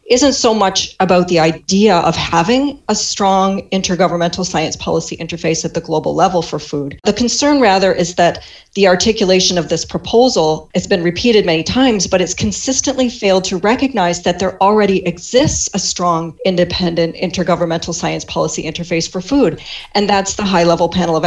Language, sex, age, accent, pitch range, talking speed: English, female, 40-59, American, 170-210 Hz, 170 wpm